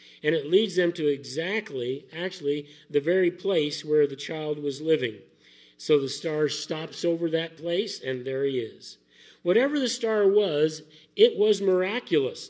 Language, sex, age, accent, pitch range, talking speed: English, male, 50-69, American, 145-180 Hz, 160 wpm